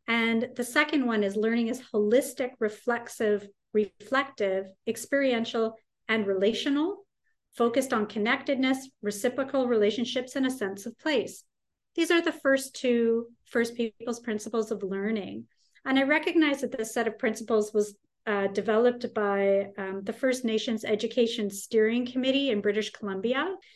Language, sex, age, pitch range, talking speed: English, female, 30-49, 205-265 Hz, 140 wpm